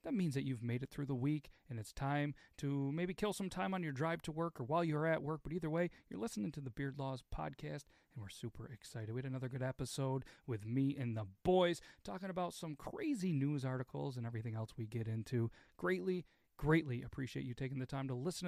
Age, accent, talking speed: 40-59, American, 235 wpm